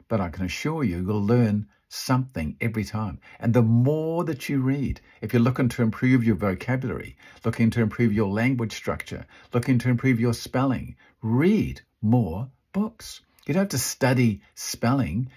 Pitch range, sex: 115-160 Hz, male